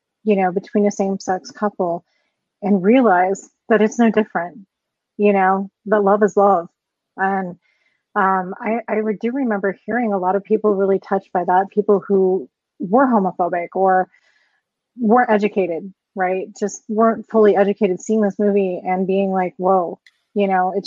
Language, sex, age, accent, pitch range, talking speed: English, female, 30-49, American, 190-215 Hz, 165 wpm